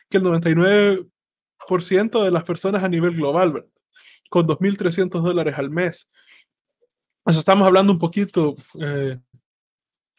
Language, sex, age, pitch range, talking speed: Spanish, male, 20-39, 160-190 Hz, 125 wpm